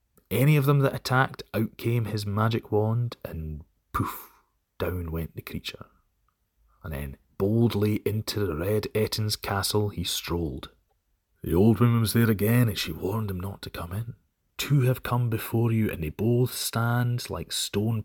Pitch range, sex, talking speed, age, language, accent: 85-115 Hz, male, 170 wpm, 30-49, English, British